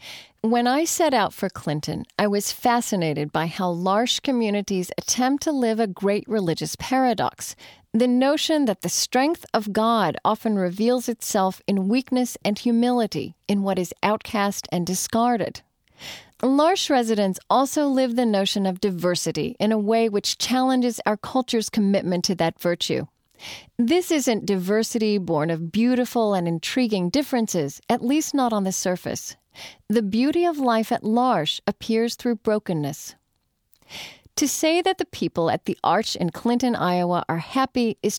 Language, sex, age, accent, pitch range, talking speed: English, female, 40-59, American, 185-245 Hz, 150 wpm